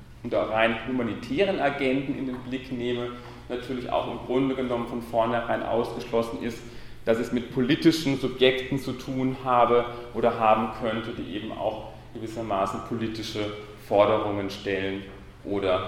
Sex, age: male, 40-59